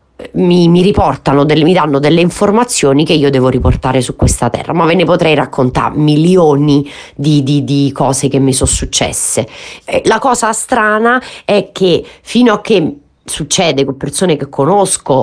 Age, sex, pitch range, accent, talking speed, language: 30-49, female, 140-180 Hz, native, 165 wpm, Italian